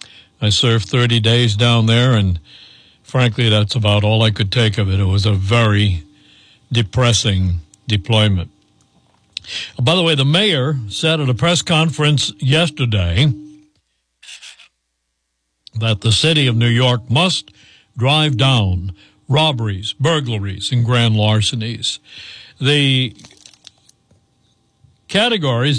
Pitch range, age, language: 105-140 Hz, 60-79, English